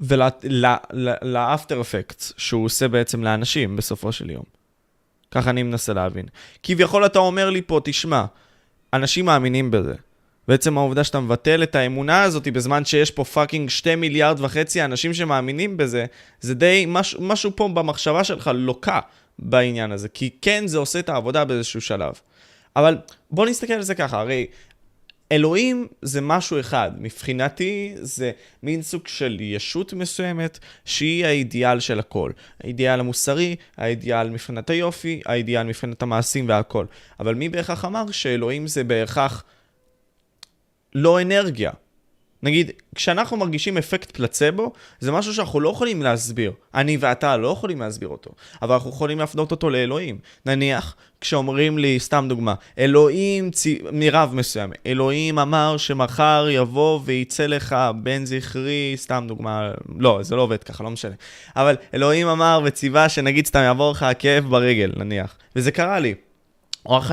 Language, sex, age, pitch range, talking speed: Hebrew, male, 20-39, 120-155 Hz, 145 wpm